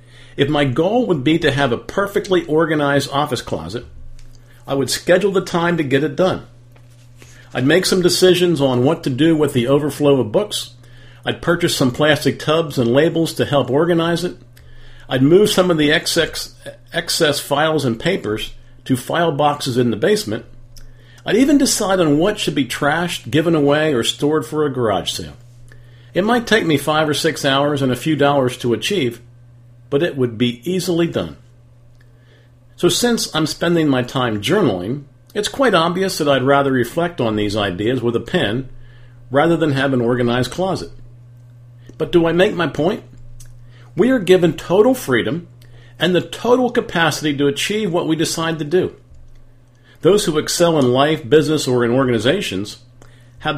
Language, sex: English, male